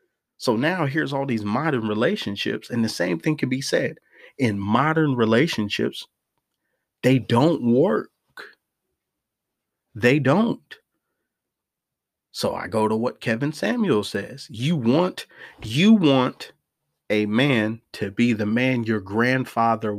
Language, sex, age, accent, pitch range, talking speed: English, male, 30-49, American, 110-135 Hz, 125 wpm